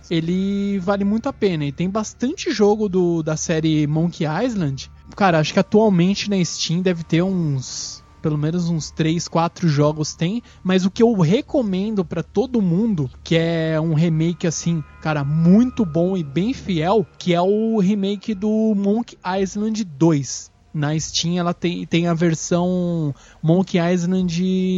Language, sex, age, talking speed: Portuguese, male, 20-39, 155 wpm